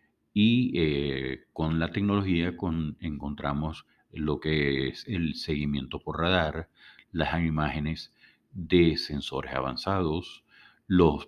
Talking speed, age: 100 wpm, 50-69